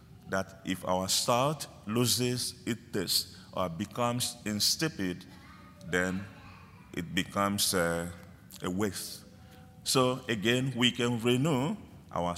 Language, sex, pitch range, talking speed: English, male, 90-110 Hz, 105 wpm